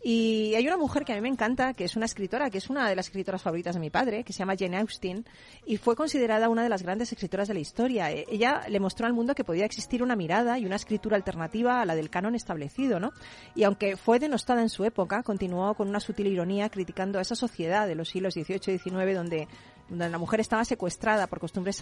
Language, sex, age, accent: Spanish, female, 40-59, Spanish